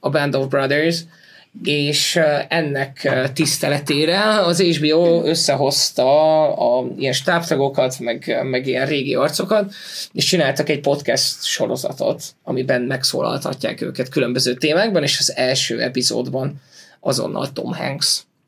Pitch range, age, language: 130-155 Hz, 20-39, Hungarian